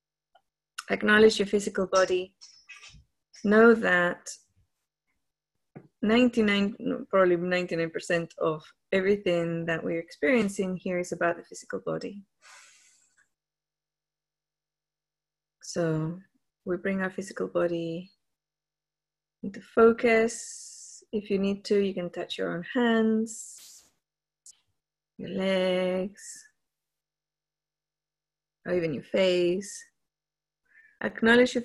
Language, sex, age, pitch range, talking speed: English, female, 20-39, 155-200 Hz, 85 wpm